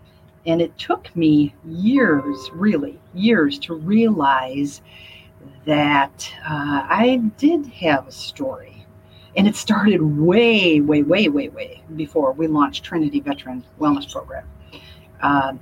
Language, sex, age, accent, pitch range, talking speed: English, female, 50-69, American, 145-220 Hz, 125 wpm